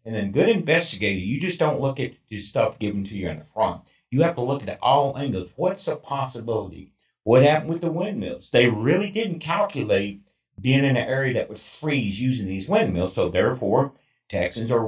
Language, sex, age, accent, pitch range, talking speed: English, male, 50-69, American, 105-140 Hz, 200 wpm